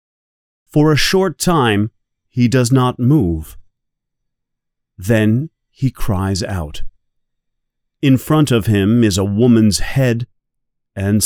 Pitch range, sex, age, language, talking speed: 95-130 Hz, male, 30-49, English, 110 wpm